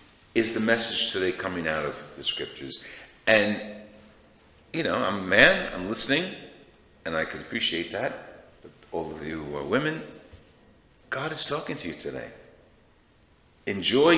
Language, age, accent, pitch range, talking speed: English, 50-69, American, 85-110 Hz, 150 wpm